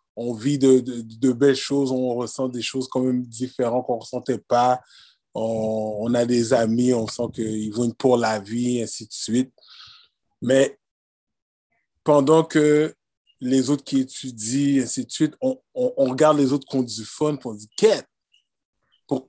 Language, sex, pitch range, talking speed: French, male, 120-140 Hz, 175 wpm